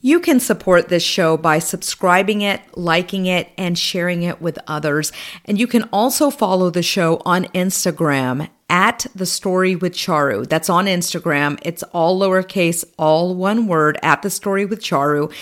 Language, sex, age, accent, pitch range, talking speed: English, female, 40-59, American, 165-215 Hz, 165 wpm